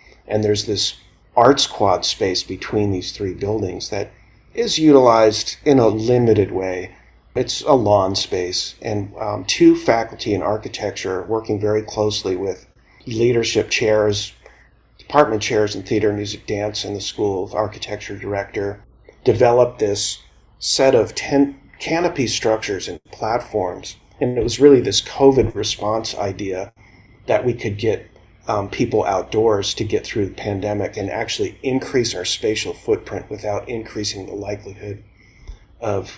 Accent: American